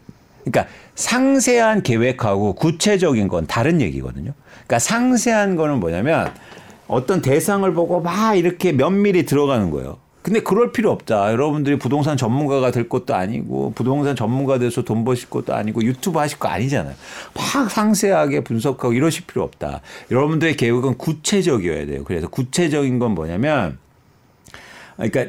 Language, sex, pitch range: Korean, male, 110-160 Hz